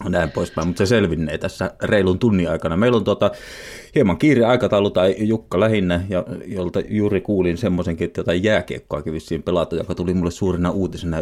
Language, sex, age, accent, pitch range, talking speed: Finnish, male, 30-49, native, 85-100 Hz, 175 wpm